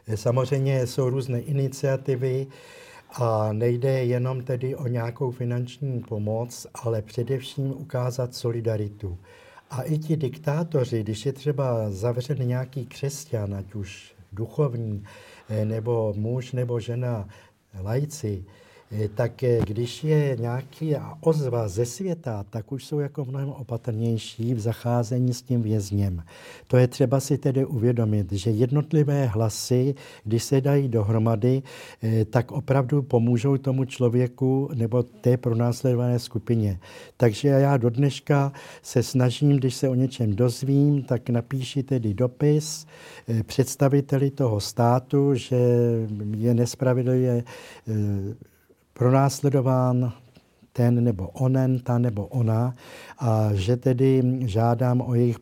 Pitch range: 115-135 Hz